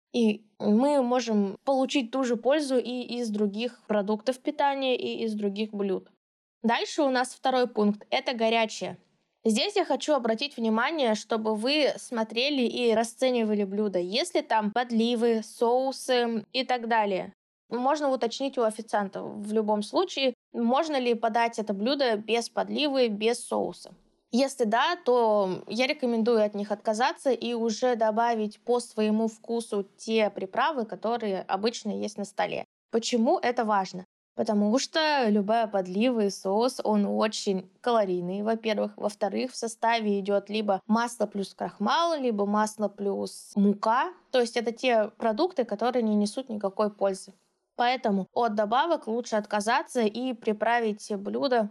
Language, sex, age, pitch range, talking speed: Russian, female, 20-39, 210-245 Hz, 140 wpm